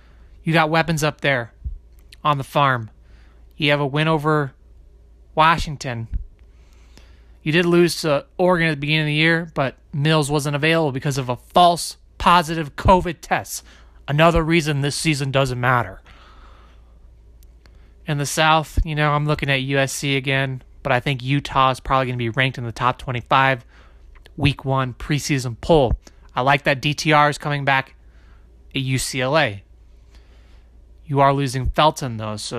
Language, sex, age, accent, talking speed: English, male, 30-49, American, 155 wpm